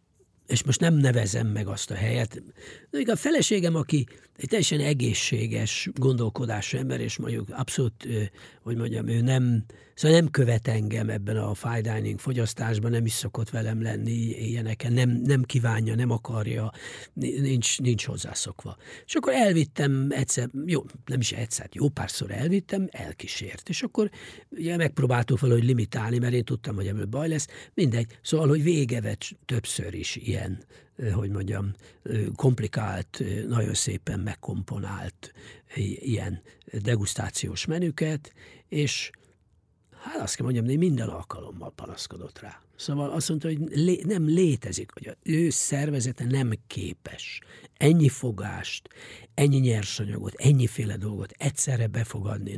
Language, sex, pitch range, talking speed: English, male, 110-140 Hz, 130 wpm